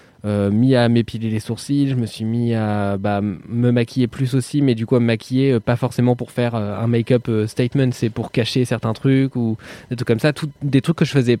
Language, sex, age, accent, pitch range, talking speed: French, male, 20-39, French, 110-135 Hz, 255 wpm